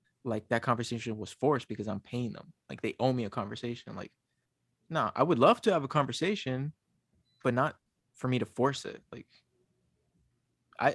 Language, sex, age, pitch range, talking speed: English, male, 20-39, 110-130 Hz, 185 wpm